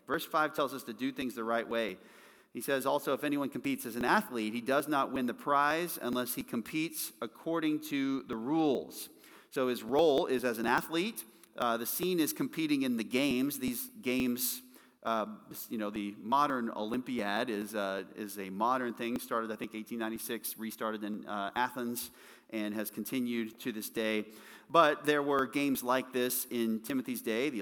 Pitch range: 110-145 Hz